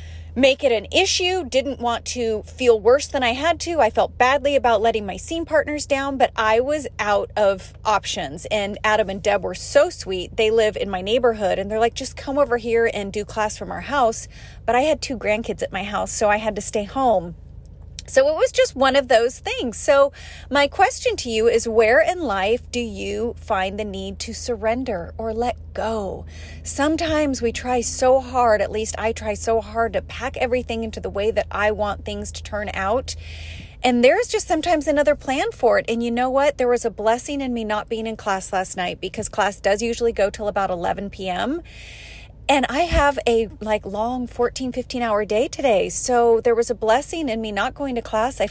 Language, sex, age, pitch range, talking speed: English, female, 30-49, 210-265 Hz, 215 wpm